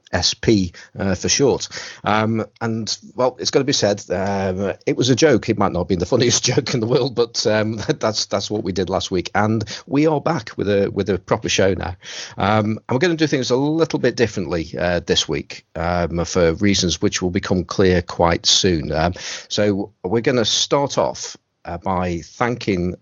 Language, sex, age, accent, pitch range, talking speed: English, male, 40-59, British, 90-110 Hz, 210 wpm